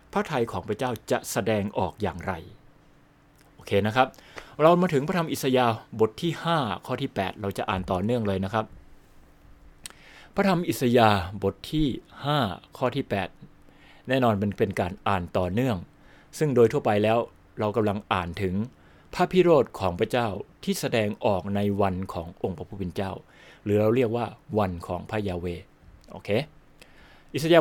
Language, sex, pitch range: Turkish, male, 100-135 Hz